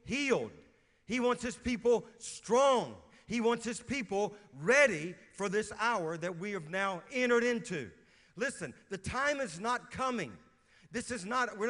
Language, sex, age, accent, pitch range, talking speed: English, male, 50-69, American, 150-220 Hz, 155 wpm